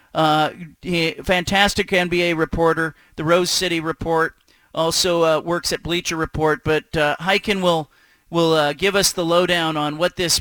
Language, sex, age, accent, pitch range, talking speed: English, male, 40-59, American, 160-190 Hz, 160 wpm